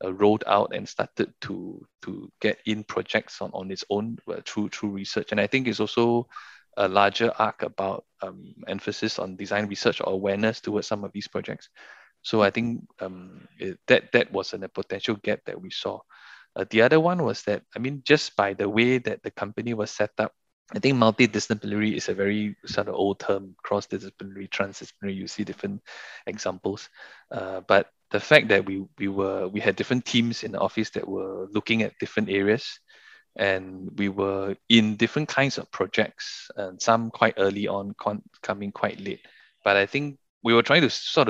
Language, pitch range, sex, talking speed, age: English, 100-115 Hz, male, 195 wpm, 20-39